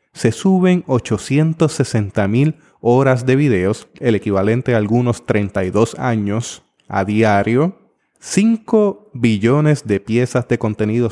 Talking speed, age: 115 wpm, 30-49